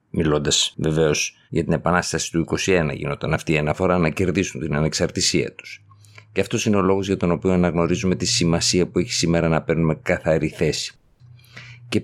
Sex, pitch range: male, 80-95 Hz